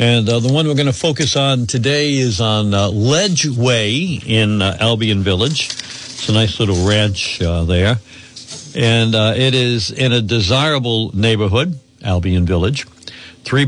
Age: 60-79